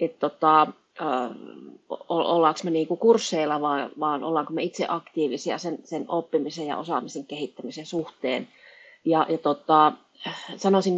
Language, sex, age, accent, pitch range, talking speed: Finnish, female, 30-49, native, 160-205 Hz, 120 wpm